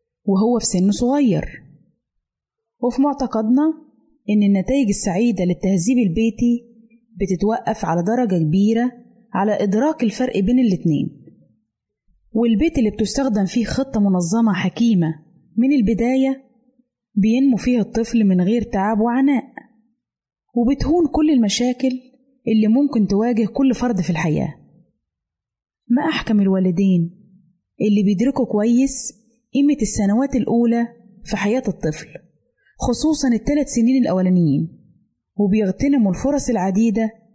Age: 20-39